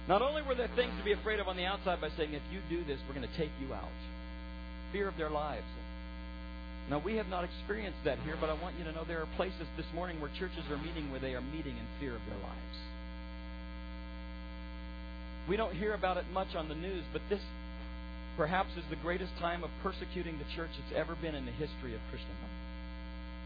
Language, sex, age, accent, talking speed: English, male, 50-69, American, 225 wpm